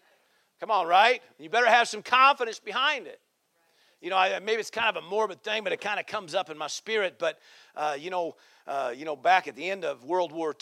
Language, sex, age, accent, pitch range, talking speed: English, male, 50-69, American, 165-210 Hz, 250 wpm